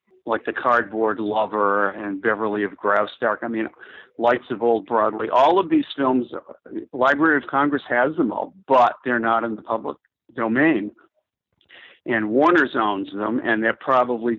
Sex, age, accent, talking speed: male, 50-69, American, 160 wpm